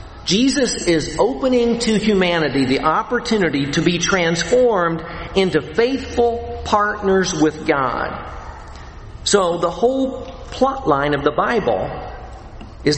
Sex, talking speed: male, 110 wpm